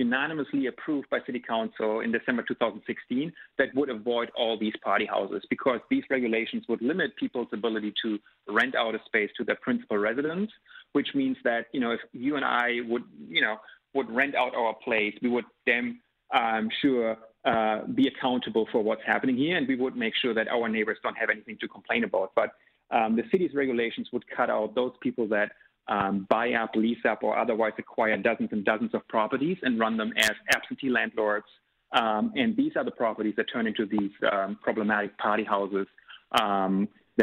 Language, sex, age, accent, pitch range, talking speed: English, male, 30-49, German, 110-130 Hz, 190 wpm